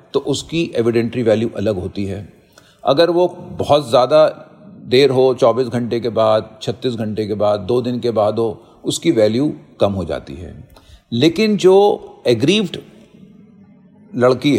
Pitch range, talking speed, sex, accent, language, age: 115-165 Hz, 150 wpm, male, native, Hindi, 50-69